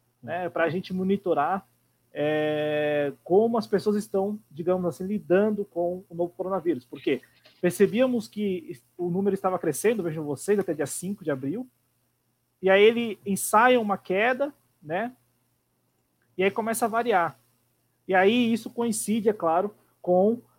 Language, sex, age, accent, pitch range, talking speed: Portuguese, male, 20-39, Brazilian, 150-195 Hz, 145 wpm